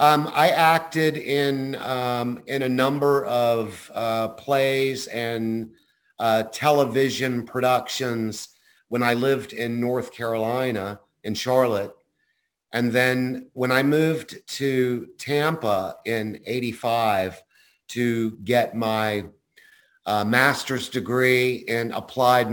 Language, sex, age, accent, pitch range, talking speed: English, male, 50-69, American, 115-135 Hz, 105 wpm